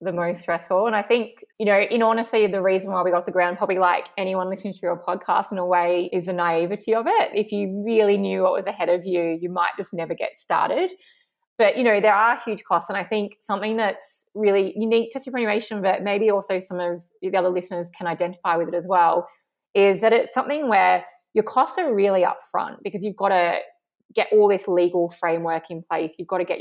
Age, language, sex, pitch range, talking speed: 20-39, English, female, 170-210 Hz, 230 wpm